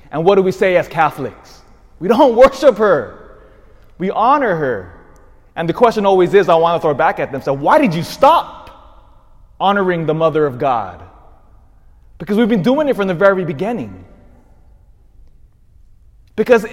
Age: 30-49